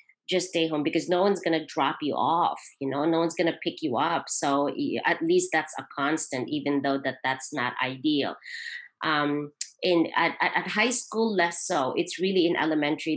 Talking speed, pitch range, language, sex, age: 190 wpm, 140-170 Hz, English, female, 30-49